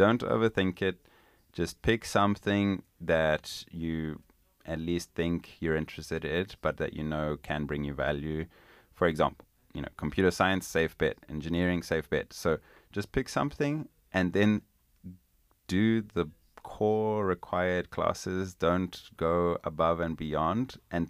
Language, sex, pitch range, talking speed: English, male, 80-90 Hz, 140 wpm